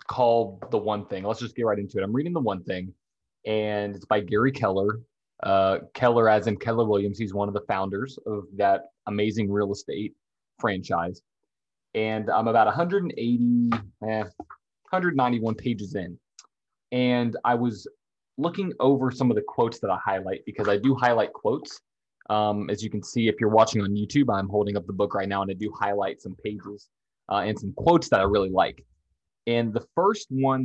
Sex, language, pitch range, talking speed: male, English, 100-130 Hz, 190 wpm